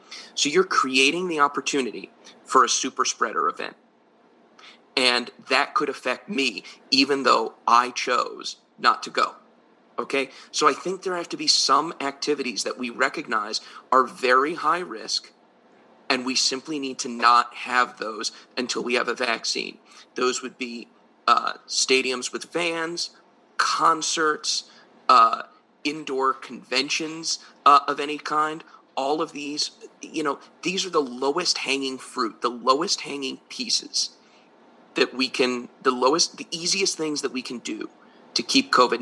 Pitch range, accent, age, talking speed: 130-175 Hz, American, 30-49, 150 wpm